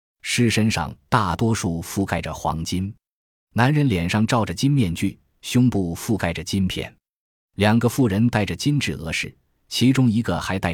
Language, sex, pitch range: Chinese, male, 85-120 Hz